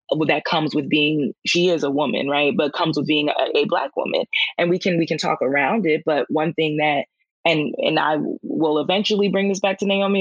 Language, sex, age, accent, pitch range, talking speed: English, female, 20-39, American, 150-170 Hz, 230 wpm